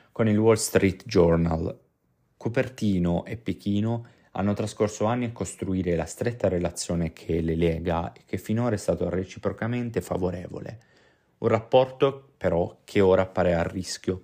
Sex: male